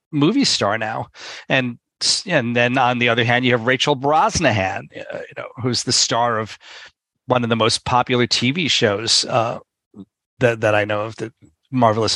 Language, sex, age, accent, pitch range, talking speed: English, male, 40-59, American, 110-125 Hz, 180 wpm